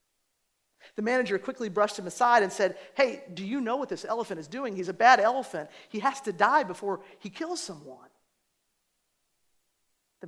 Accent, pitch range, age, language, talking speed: American, 165-210 Hz, 50-69, English, 175 wpm